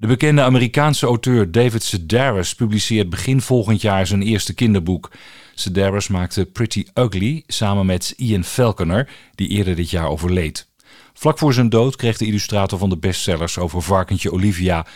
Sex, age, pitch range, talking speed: male, 50-69, 95-125 Hz, 155 wpm